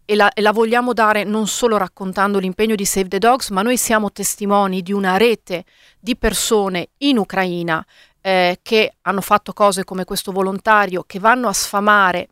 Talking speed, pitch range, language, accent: 175 wpm, 190-225 Hz, Italian, native